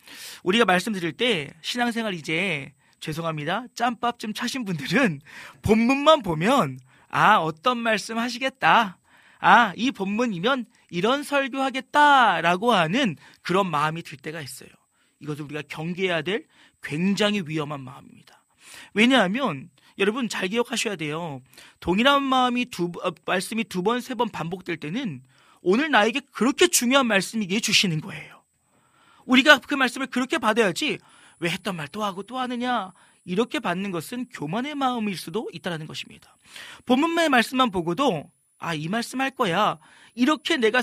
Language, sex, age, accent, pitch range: Korean, male, 40-59, native, 170-250 Hz